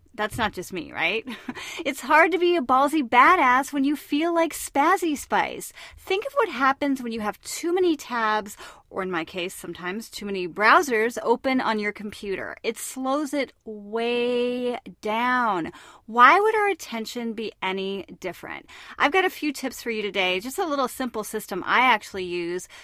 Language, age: English, 30-49